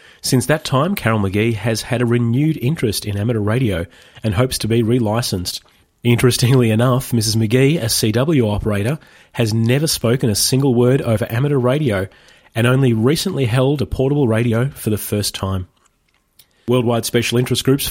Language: English